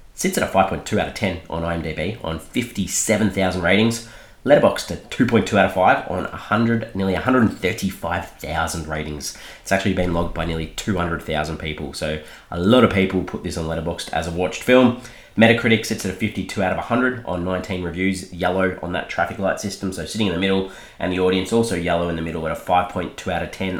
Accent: Australian